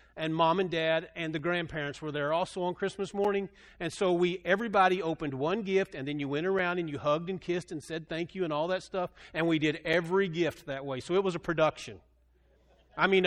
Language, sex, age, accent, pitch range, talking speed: English, male, 40-59, American, 140-190 Hz, 235 wpm